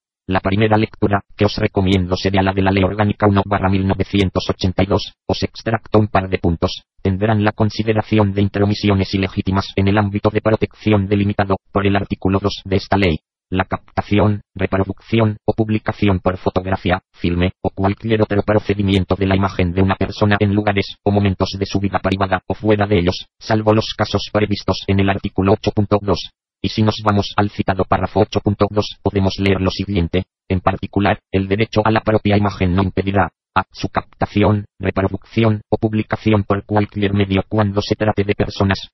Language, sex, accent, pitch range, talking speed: Spanish, male, Spanish, 95-105 Hz, 175 wpm